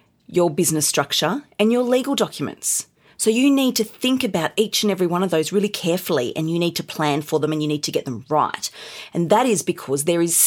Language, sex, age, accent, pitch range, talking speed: English, female, 30-49, Australian, 150-220 Hz, 235 wpm